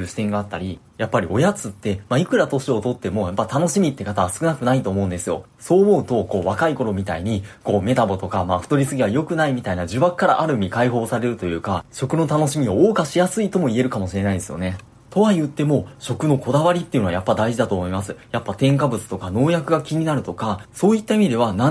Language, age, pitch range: Japanese, 20-39, 105-150 Hz